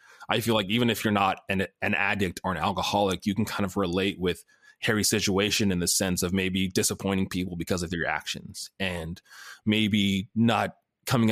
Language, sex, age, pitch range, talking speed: English, male, 20-39, 90-110 Hz, 190 wpm